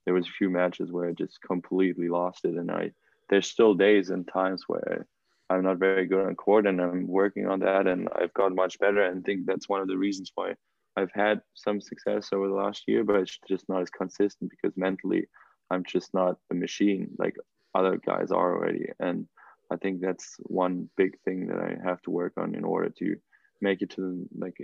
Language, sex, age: English, male, 20-39